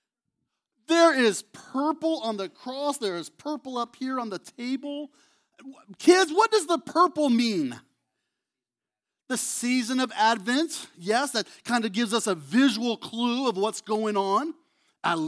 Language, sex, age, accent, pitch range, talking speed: English, male, 40-59, American, 220-300 Hz, 150 wpm